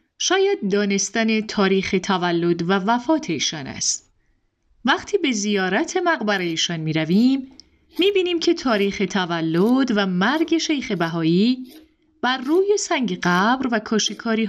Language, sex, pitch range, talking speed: Persian, female, 195-285 Hz, 125 wpm